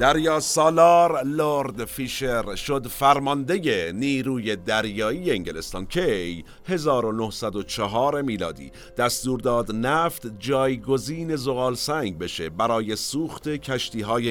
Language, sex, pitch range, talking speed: Persian, male, 110-155 Hz, 95 wpm